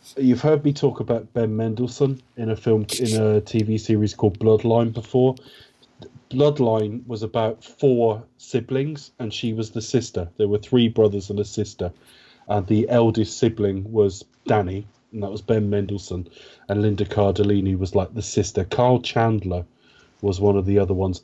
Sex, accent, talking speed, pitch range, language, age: male, British, 170 wpm, 105-130 Hz, English, 30-49